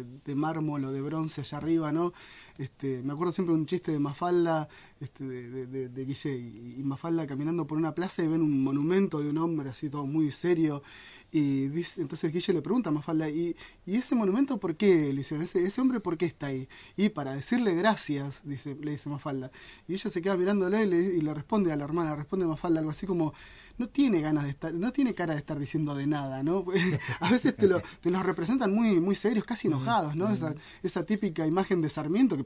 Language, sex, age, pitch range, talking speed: Spanish, male, 20-39, 150-190 Hz, 225 wpm